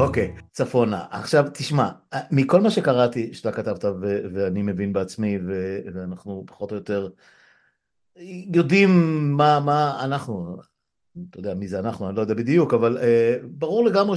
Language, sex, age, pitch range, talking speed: Hebrew, male, 50-69, 115-175 Hz, 155 wpm